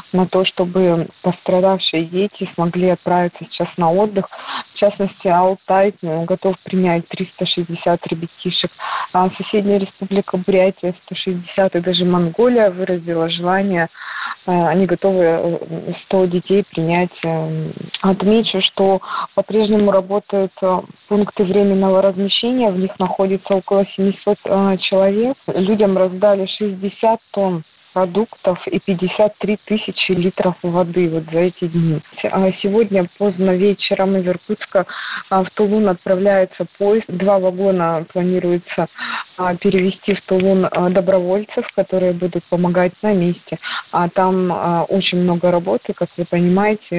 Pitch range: 180-200 Hz